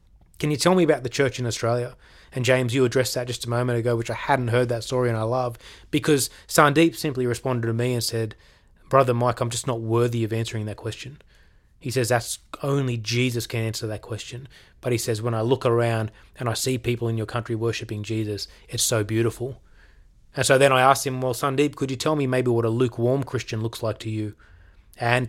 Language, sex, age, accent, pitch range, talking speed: English, male, 20-39, Australian, 115-135 Hz, 225 wpm